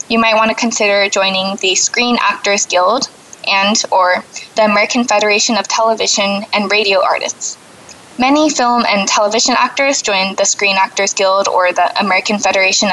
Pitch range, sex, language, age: 195-235 Hz, female, English, 20-39